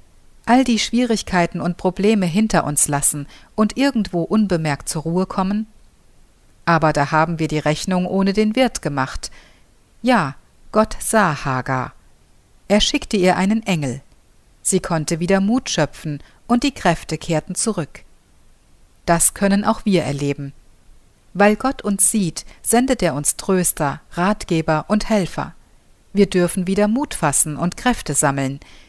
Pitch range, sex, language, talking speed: 150-215 Hz, female, German, 140 wpm